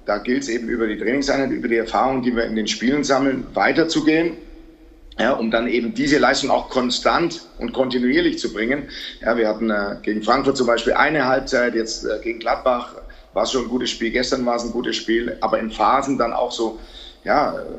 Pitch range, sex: 110-135 Hz, male